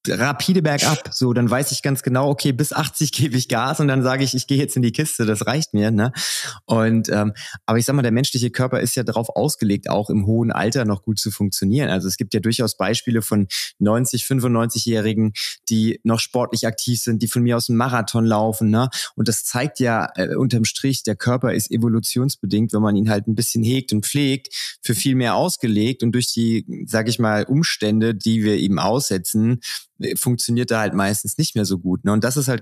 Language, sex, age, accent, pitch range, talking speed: German, male, 20-39, German, 110-130 Hz, 220 wpm